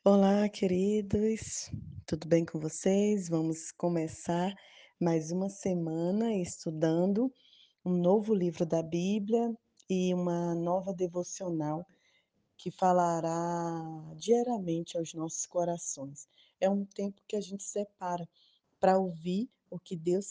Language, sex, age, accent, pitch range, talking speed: Portuguese, female, 20-39, Brazilian, 160-190 Hz, 115 wpm